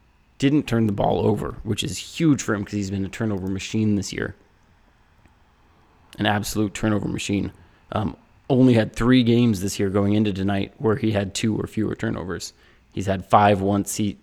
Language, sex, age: English, male, 20-39